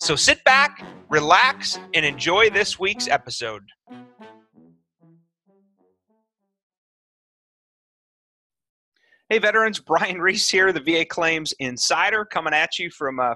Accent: American